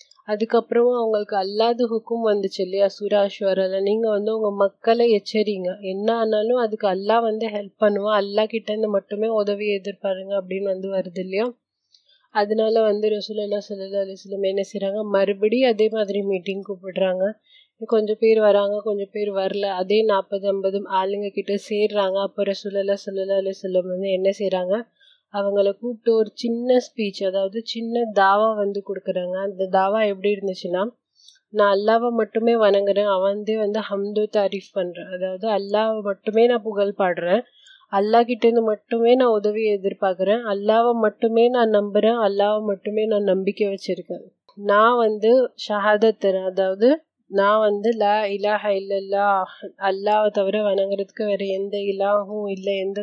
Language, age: Tamil, 30-49